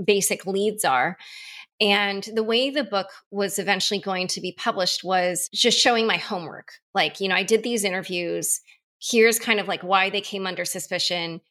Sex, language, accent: female, English, American